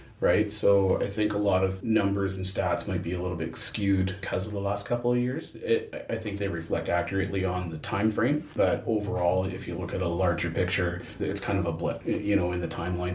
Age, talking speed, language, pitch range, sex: 30-49, 235 wpm, English, 90-100 Hz, male